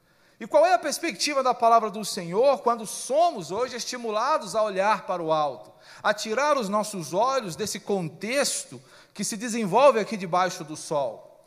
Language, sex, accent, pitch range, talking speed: Portuguese, male, Brazilian, 160-230 Hz, 165 wpm